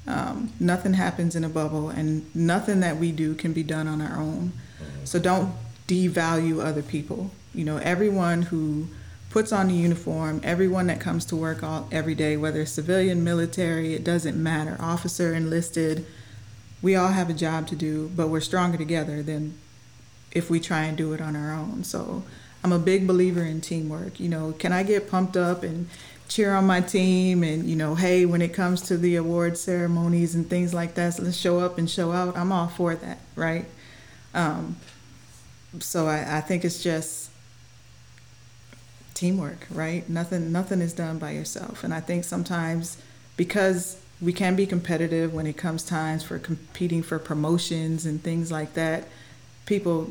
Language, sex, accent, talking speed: English, female, American, 180 wpm